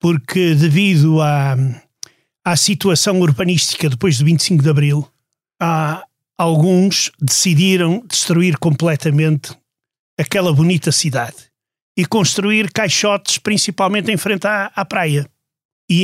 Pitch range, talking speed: 150-190 Hz, 105 wpm